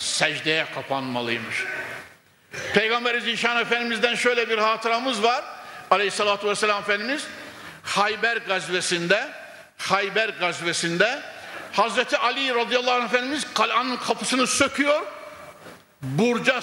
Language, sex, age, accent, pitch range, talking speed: Turkish, male, 60-79, native, 205-275 Hz, 90 wpm